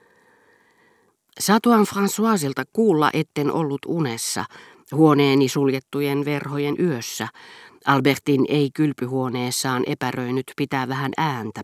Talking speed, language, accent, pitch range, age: 90 wpm, Finnish, native, 125-155 Hz, 40-59